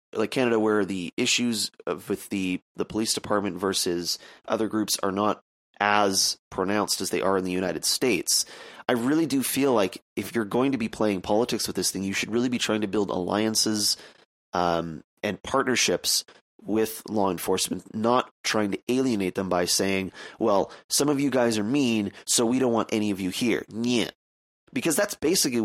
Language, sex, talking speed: English, male, 185 wpm